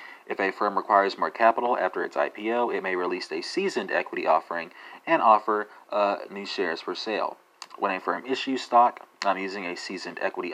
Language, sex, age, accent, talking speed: English, male, 30-49, American, 190 wpm